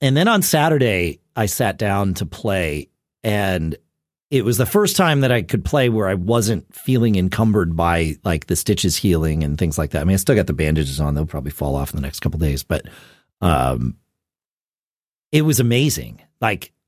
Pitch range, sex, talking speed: 90-130 Hz, male, 205 wpm